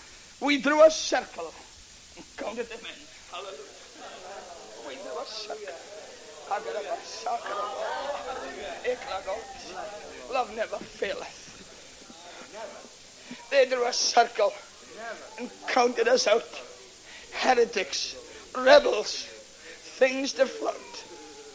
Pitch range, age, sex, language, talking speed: 215-310 Hz, 60-79, male, English, 80 wpm